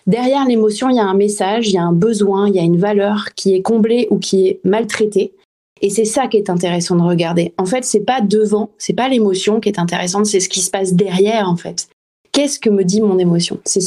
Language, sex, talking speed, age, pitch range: French, female, 250 wpm, 30-49, 185-215 Hz